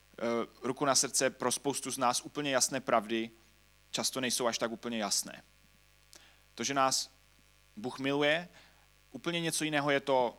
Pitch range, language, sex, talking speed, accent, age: 115-145 Hz, Czech, male, 150 wpm, native, 30-49